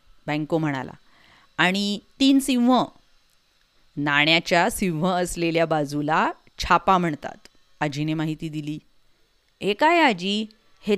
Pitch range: 160-215 Hz